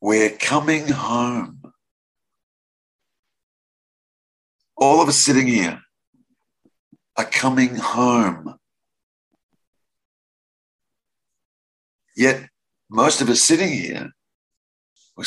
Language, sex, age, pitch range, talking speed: English, male, 50-69, 100-150 Hz, 70 wpm